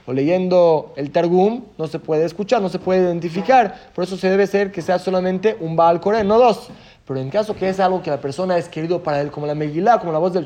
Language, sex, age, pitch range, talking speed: Spanish, male, 30-49, 170-220 Hz, 250 wpm